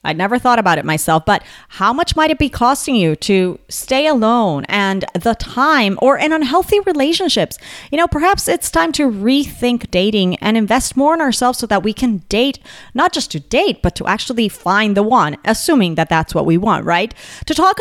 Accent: American